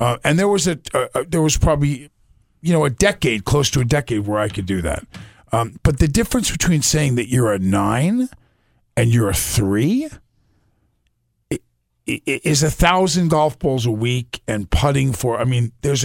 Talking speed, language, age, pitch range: 185 wpm, English, 50-69, 100-140 Hz